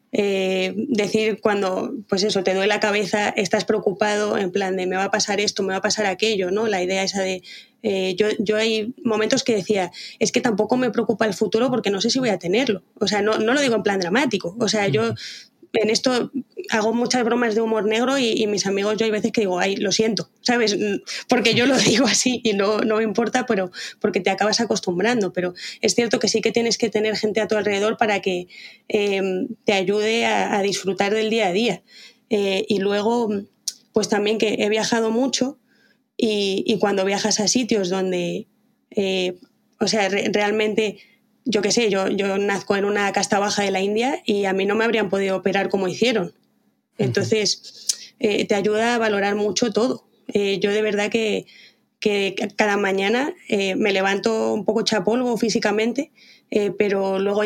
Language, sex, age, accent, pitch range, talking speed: Spanish, female, 20-39, Spanish, 200-230 Hz, 200 wpm